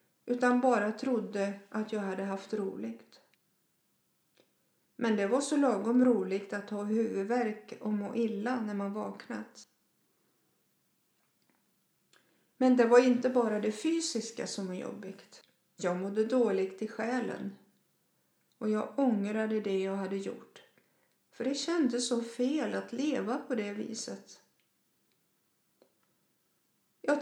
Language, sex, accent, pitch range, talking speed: Swedish, female, native, 205-250 Hz, 125 wpm